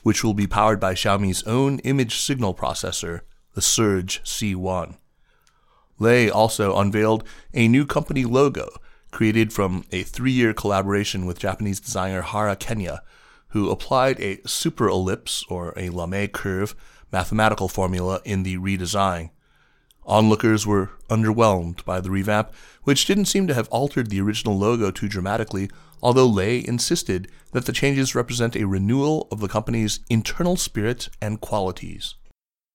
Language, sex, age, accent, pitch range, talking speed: English, male, 30-49, American, 95-120 Hz, 140 wpm